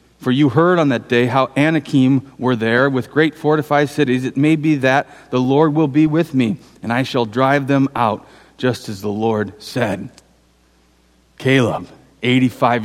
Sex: male